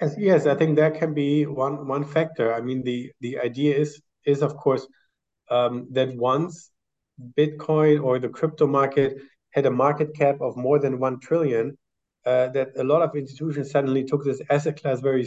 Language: English